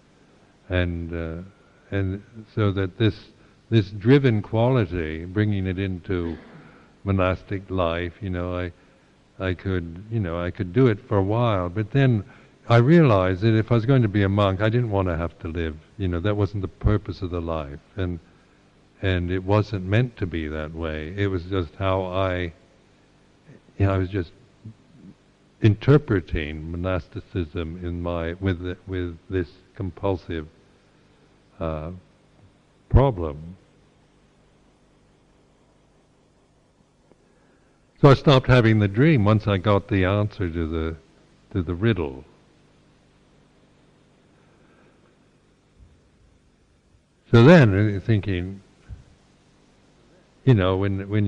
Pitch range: 90-105 Hz